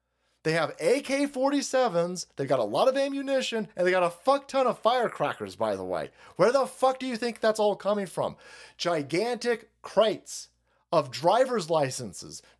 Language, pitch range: English, 180-265 Hz